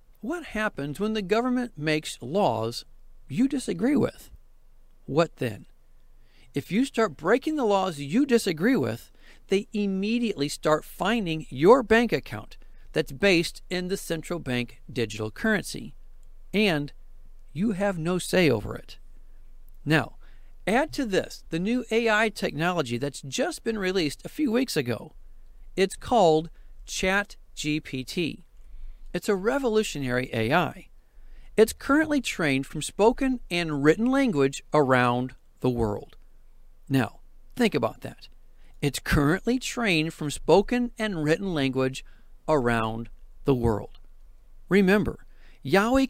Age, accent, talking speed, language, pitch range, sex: 50-69, American, 120 wpm, English, 140-225 Hz, male